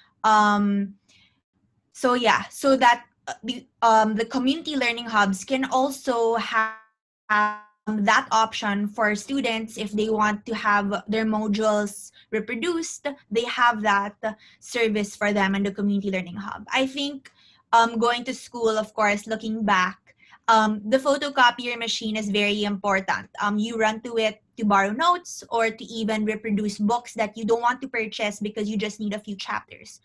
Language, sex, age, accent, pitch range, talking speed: English, female, 20-39, Filipino, 210-245 Hz, 160 wpm